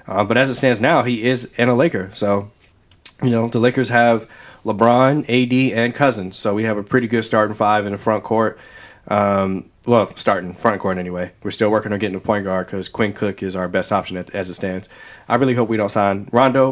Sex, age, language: male, 20-39, English